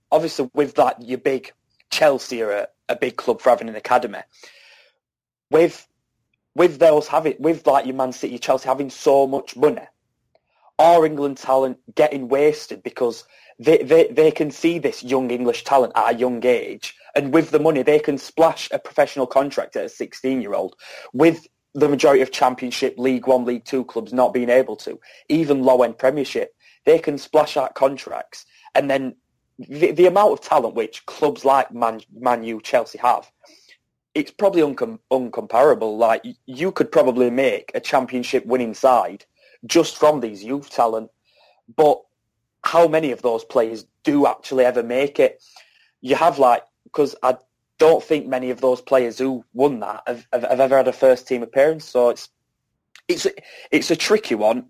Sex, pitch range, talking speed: male, 125-160 Hz, 170 wpm